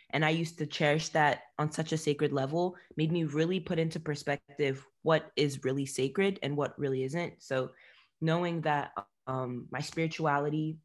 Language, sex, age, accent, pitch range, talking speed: English, female, 20-39, American, 135-160 Hz, 170 wpm